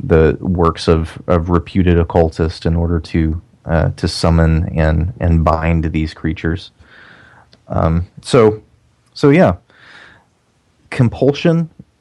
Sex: male